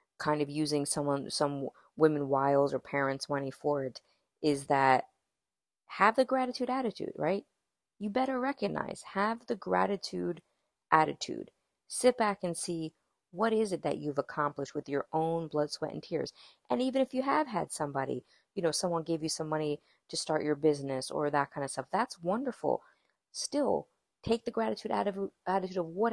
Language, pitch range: English, 150-205 Hz